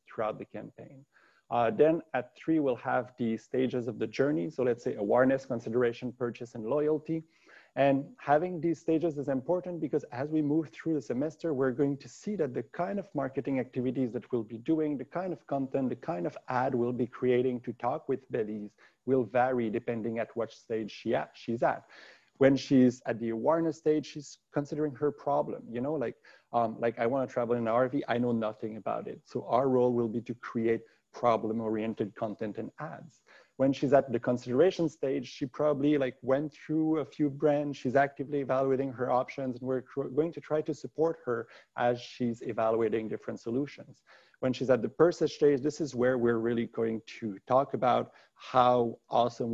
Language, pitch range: English, 115-145 Hz